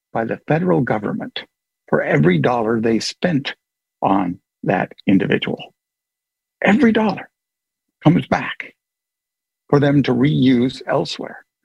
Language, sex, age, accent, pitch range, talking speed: English, male, 60-79, American, 125-145 Hz, 110 wpm